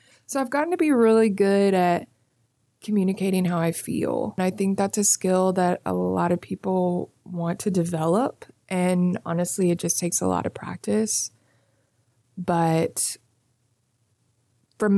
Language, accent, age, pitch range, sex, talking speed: English, American, 20-39, 165-190 Hz, female, 150 wpm